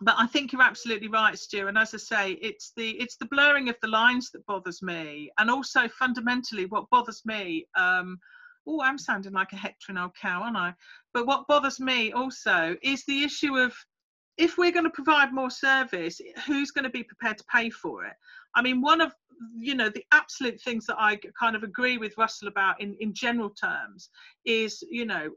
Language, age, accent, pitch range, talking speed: English, 40-59, British, 205-275 Hz, 205 wpm